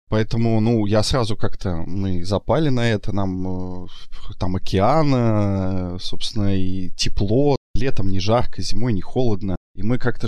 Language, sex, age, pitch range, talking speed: Russian, male, 20-39, 100-120 Hz, 140 wpm